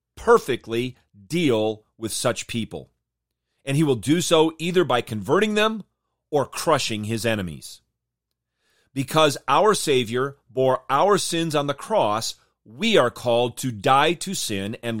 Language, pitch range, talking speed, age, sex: English, 110-150 Hz, 140 wpm, 40-59, male